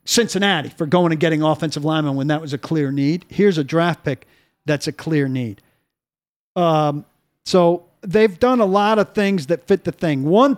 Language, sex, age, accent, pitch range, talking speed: English, male, 50-69, American, 155-195 Hz, 195 wpm